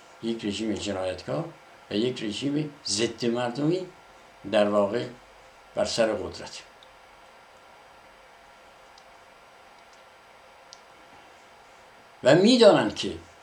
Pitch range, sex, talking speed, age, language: 110-150 Hz, male, 70 wpm, 60-79, Persian